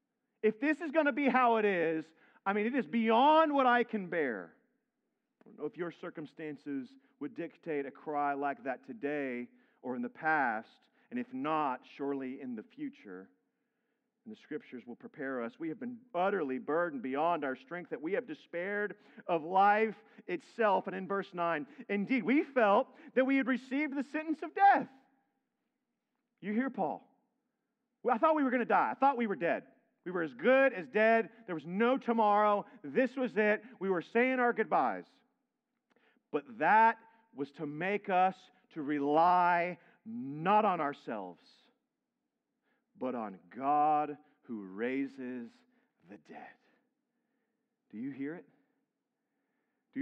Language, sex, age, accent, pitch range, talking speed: English, male, 40-59, American, 170-250 Hz, 160 wpm